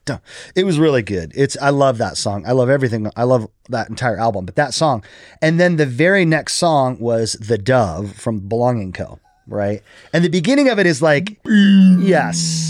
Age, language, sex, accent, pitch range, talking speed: 30-49, English, male, American, 105-145 Hz, 195 wpm